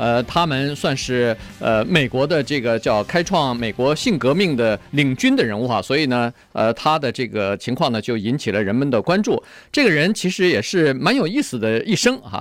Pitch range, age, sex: 120-180 Hz, 50-69, male